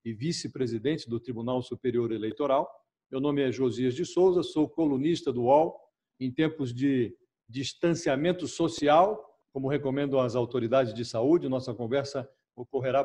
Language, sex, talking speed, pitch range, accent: Portuguese, male, 140 wpm, 125-160 Hz, Brazilian